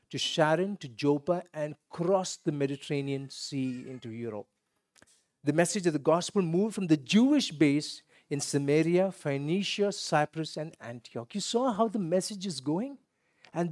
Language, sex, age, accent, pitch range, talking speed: English, male, 50-69, Indian, 135-185 Hz, 155 wpm